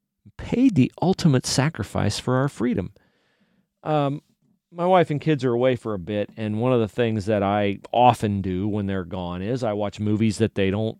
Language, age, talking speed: English, 40-59, 195 wpm